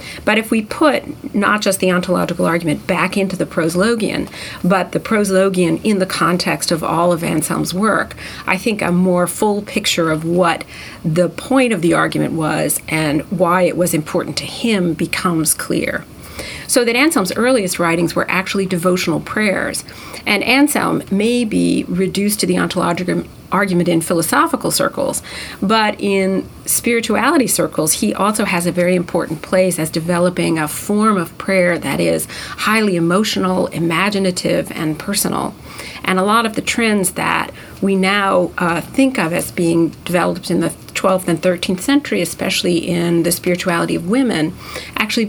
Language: English